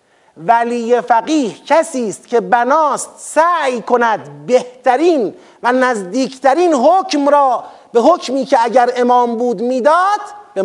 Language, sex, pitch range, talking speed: Persian, male, 235-320 Hz, 115 wpm